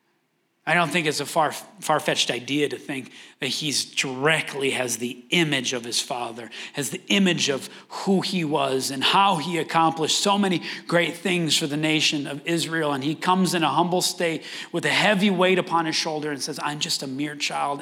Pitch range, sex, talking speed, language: 155-225 Hz, male, 200 wpm, English